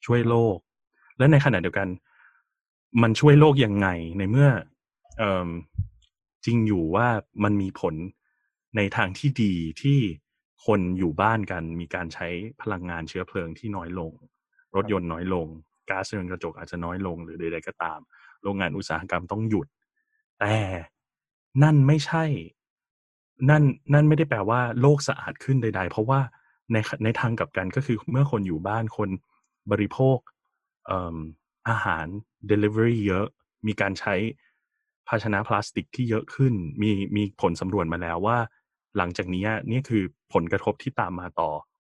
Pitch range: 90-125 Hz